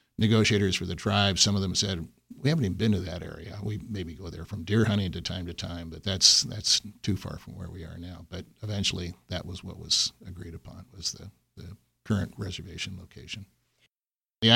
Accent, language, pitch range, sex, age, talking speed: American, English, 90-110 Hz, male, 50-69, 210 wpm